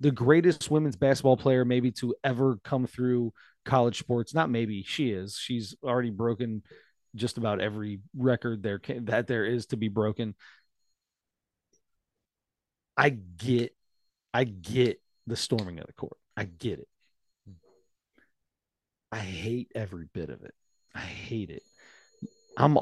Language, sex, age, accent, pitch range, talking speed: English, male, 30-49, American, 100-135 Hz, 135 wpm